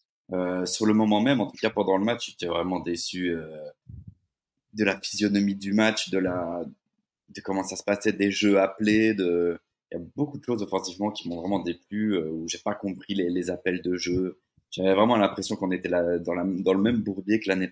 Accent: French